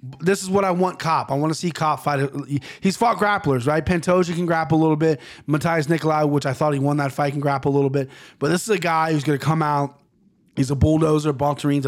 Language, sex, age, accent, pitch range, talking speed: English, male, 20-39, American, 135-165 Hz, 245 wpm